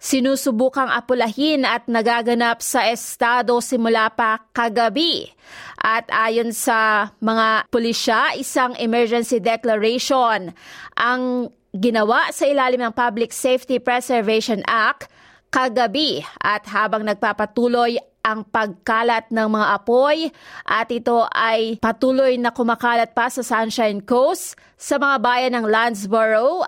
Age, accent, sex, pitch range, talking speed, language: 20-39, native, female, 215-245 Hz, 110 wpm, Filipino